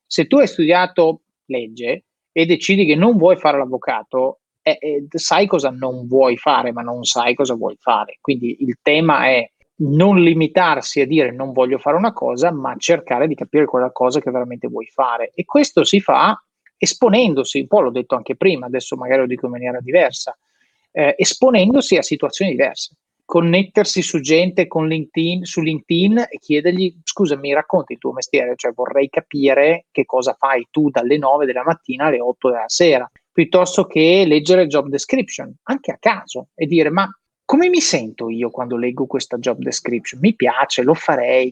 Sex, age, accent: male, 30-49, native